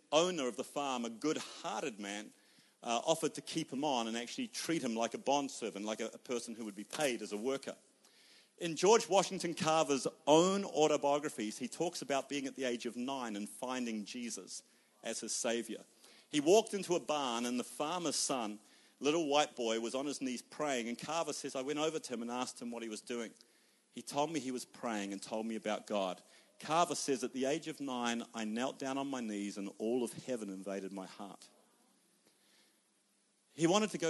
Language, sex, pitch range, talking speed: English, male, 115-155 Hz, 210 wpm